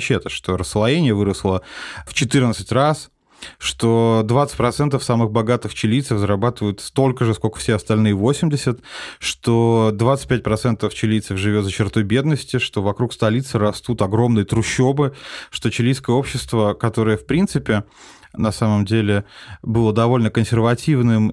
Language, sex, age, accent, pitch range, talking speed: Russian, male, 20-39, native, 105-130 Hz, 120 wpm